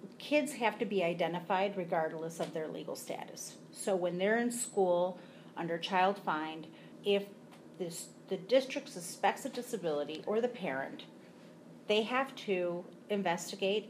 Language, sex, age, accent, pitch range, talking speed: English, female, 40-59, American, 180-215 Hz, 140 wpm